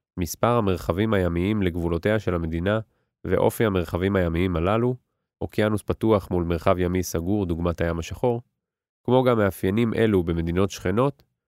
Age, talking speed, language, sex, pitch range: 30-49, 130 wpm, Hebrew, male, 90-110 Hz